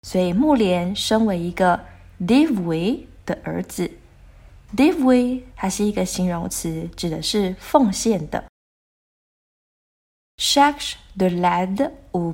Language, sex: Chinese, female